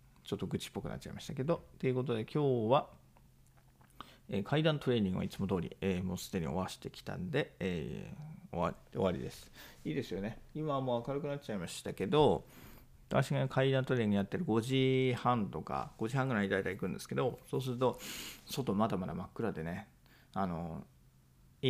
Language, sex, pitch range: Japanese, male, 95-135 Hz